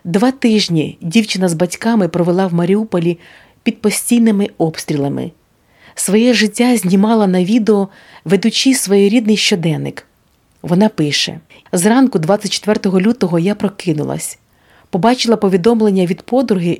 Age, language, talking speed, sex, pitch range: 40-59, Ukrainian, 105 wpm, female, 175-220 Hz